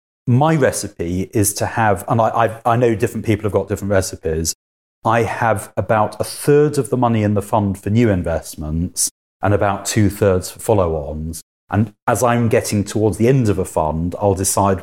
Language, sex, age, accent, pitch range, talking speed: English, male, 30-49, British, 90-110 Hz, 185 wpm